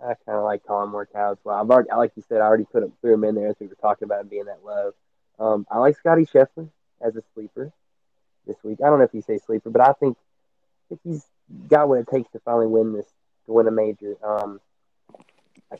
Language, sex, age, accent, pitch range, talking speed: English, male, 20-39, American, 105-125 Hz, 255 wpm